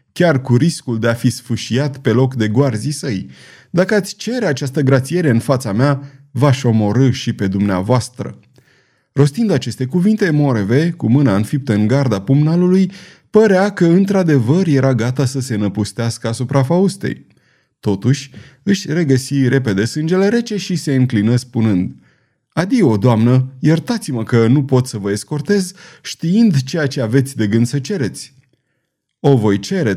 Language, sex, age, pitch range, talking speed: Romanian, male, 30-49, 115-160 Hz, 150 wpm